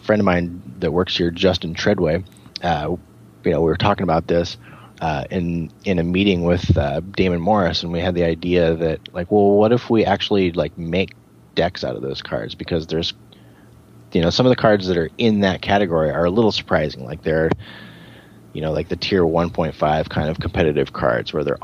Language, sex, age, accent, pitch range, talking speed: English, male, 30-49, American, 80-95 Hz, 210 wpm